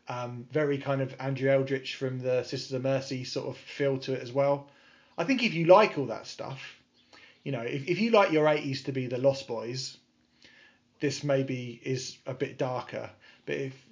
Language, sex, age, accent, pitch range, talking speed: English, male, 30-49, British, 120-140 Hz, 205 wpm